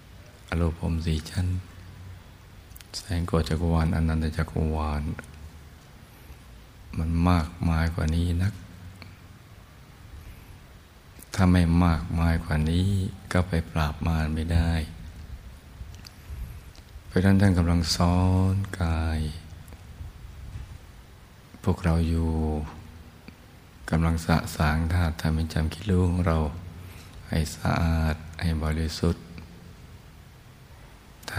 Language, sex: Thai, male